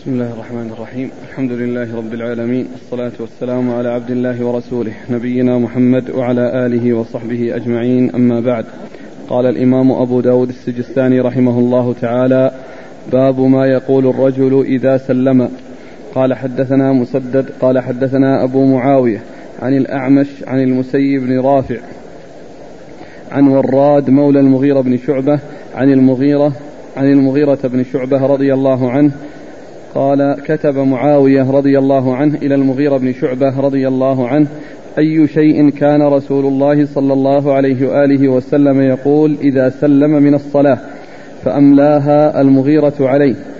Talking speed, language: 130 wpm, Arabic